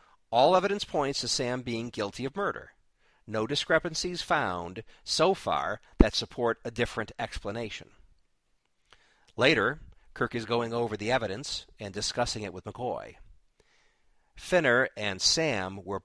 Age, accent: 50-69, American